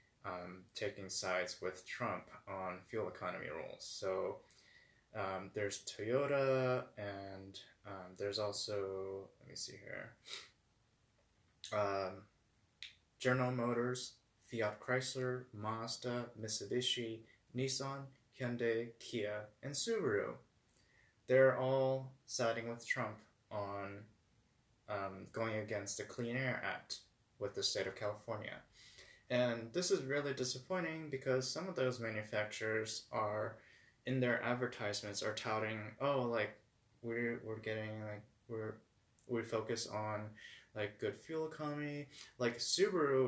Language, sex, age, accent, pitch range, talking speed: English, male, 20-39, American, 105-125 Hz, 115 wpm